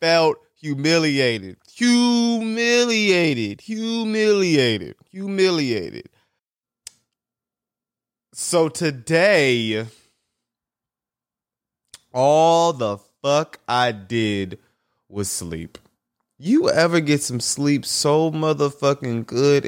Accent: American